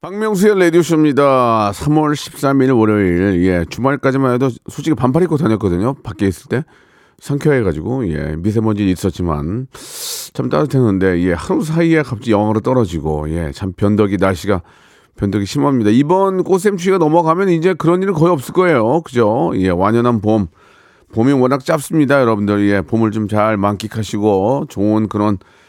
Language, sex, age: Korean, male, 40-59